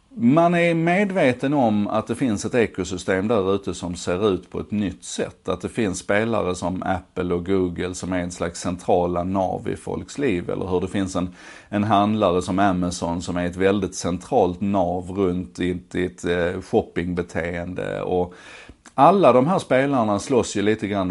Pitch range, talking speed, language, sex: 90-110 Hz, 180 wpm, Swedish, male